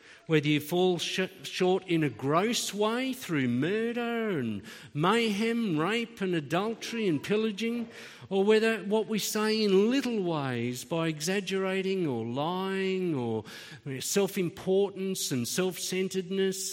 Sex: male